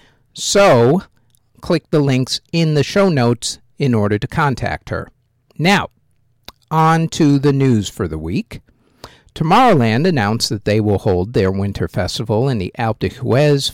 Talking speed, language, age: 155 wpm, English, 50-69